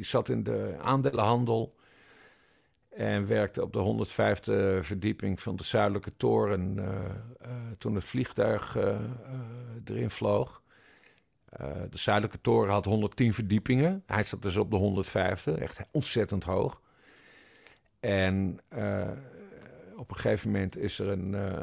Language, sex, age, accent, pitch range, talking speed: Dutch, male, 50-69, Dutch, 95-115 Hz, 140 wpm